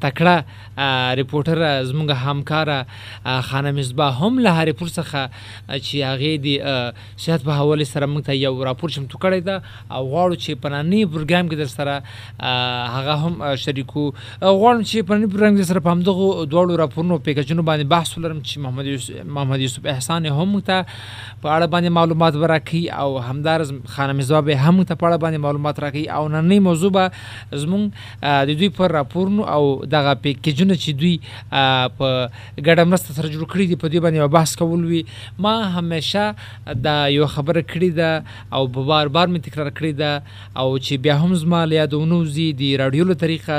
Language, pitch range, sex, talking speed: Urdu, 135-170 Hz, male, 115 wpm